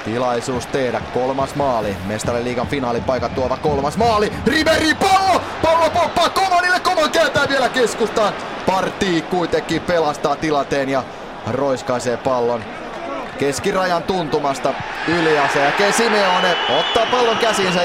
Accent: native